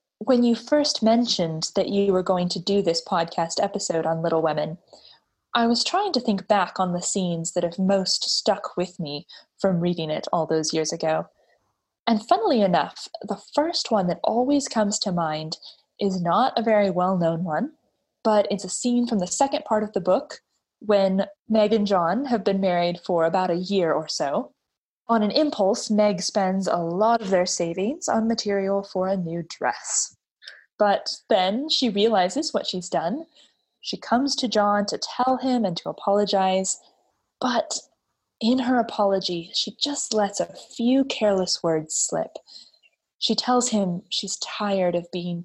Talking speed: 175 wpm